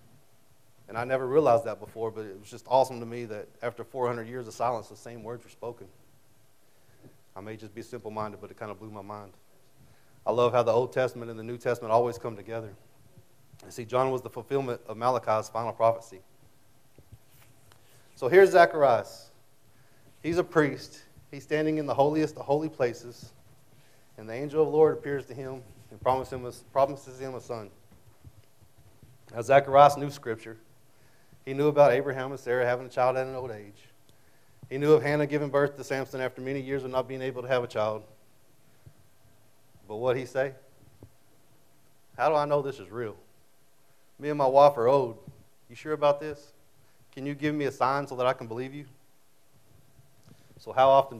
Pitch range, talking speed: 115-140 Hz, 190 wpm